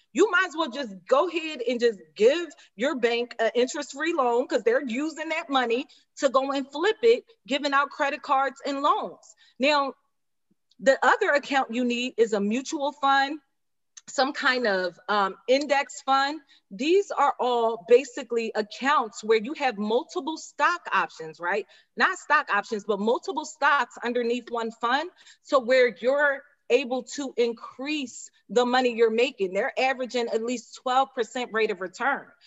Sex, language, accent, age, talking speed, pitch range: female, English, American, 30-49, 160 wpm, 225-290 Hz